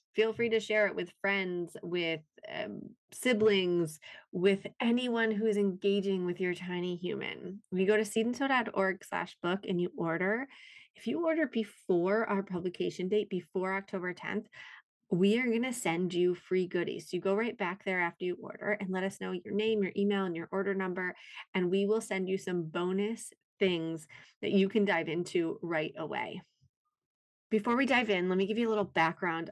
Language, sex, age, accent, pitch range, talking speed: English, female, 30-49, American, 180-215 Hz, 185 wpm